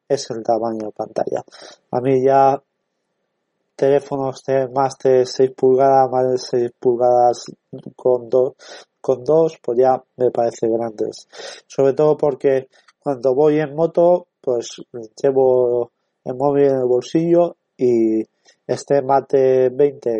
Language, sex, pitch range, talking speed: Spanish, male, 120-145 Hz, 135 wpm